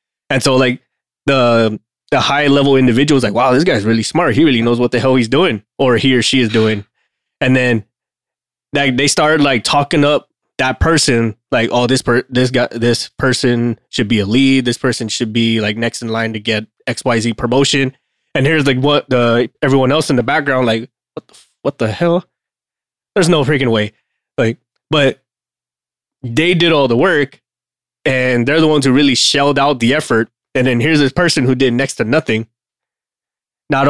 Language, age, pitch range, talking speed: English, 20-39, 115-135 Hz, 195 wpm